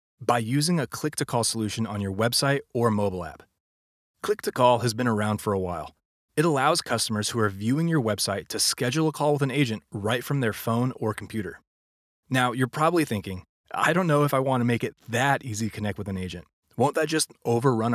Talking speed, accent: 205 wpm, American